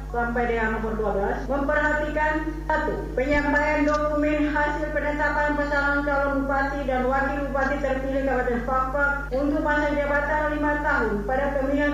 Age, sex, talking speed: 40-59, female, 125 wpm